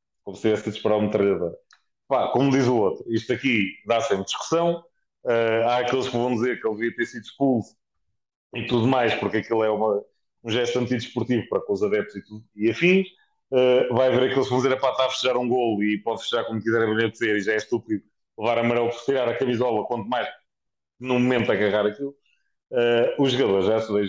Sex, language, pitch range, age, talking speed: male, Portuguese, 105-135 Hz, 30-49, 225 wpm